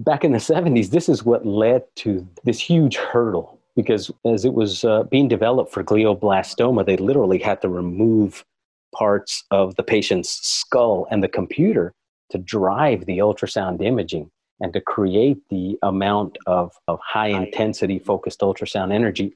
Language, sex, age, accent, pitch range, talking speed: English, male, 40-59, American, 95-110 Hz, 155 wpm